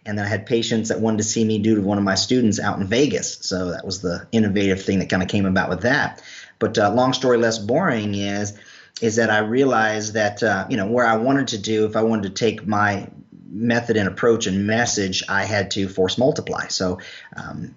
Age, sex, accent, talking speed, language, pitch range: 40-59, male, American, 235 wpm, English, 95-110 Hz